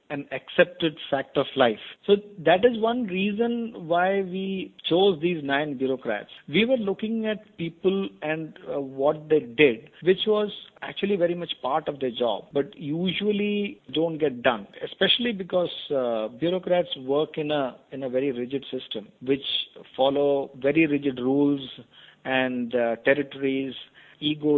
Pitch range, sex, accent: 130-180 Hz, male, Indian